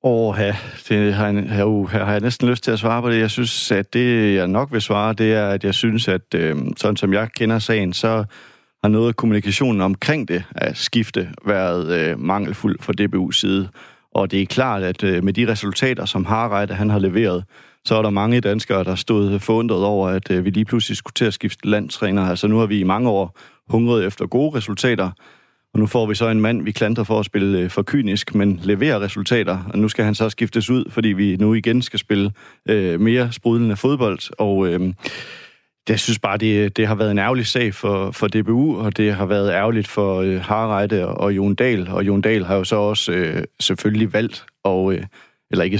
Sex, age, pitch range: male, 30-49, 100-115 Hz